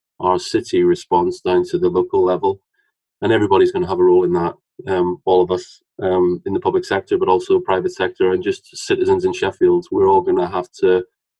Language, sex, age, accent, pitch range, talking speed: English, male, 20-39, British, 345-390 Hz, 215 wpm